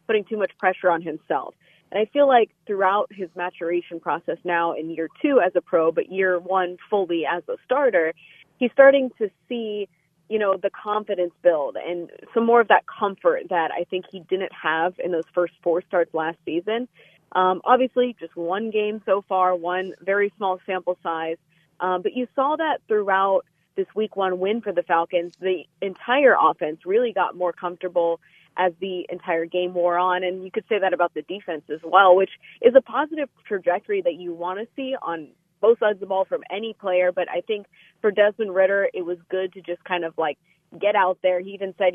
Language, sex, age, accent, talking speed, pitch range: English, female, 20-39, American, 205 wpm, 175-210 Hz